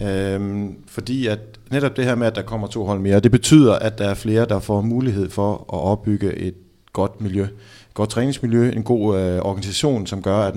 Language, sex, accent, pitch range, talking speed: Danish, male, native, 100-120 Hz, 205 wpm